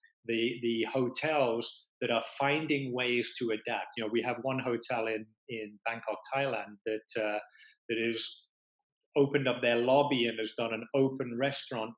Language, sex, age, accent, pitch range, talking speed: English, male, 30-49, British, 115-135 Hz, 165 wpm